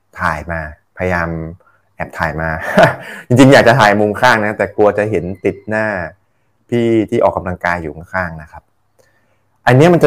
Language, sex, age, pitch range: Thai, male, 20-39, 95-120 Hz